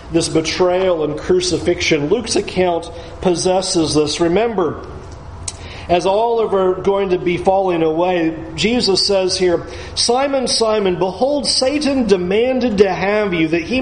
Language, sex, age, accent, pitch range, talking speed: English, male, 40-59, American, 130-190 Hz, 140 wpm